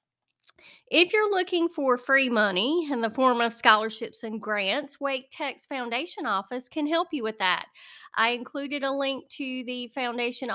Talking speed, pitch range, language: 165 wpm, 225-290 Hz, English